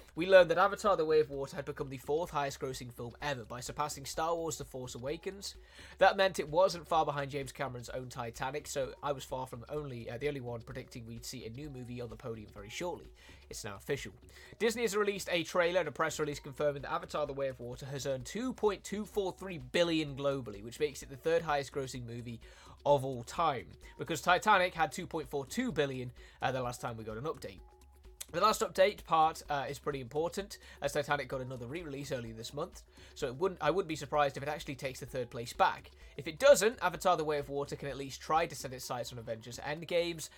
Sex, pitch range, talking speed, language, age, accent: male, 120-160 Hz, 225 wpm, Italian, 20-39, British